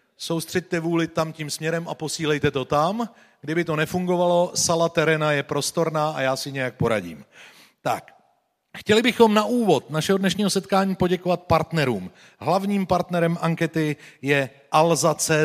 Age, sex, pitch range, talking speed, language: 40-59, male, 150-190 Hz, 140 wpm, Slovak